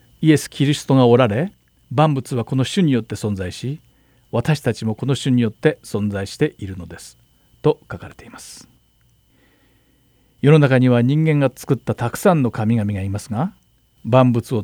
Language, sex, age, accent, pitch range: Japanese, male, 50-69, native, 105-140 Hz